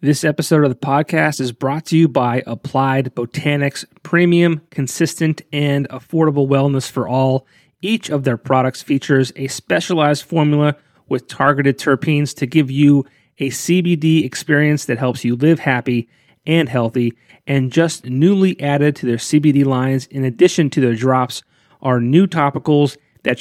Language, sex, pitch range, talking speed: English, male, 130-155 Hz, 155 wpm